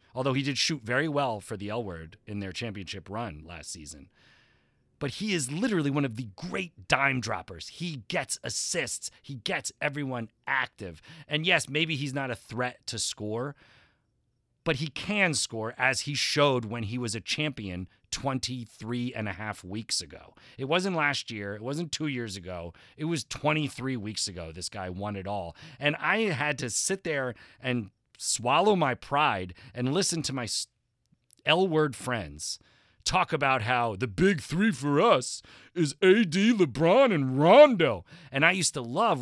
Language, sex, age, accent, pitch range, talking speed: English, male, 30-49, American, 110-150 Hz, 175 wpm